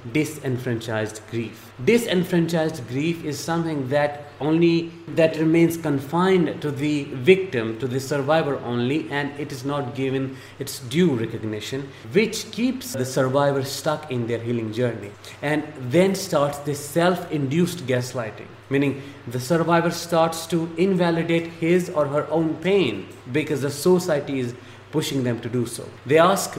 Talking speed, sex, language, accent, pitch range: 140 wpm, male, English, Indian, 125-165 Hz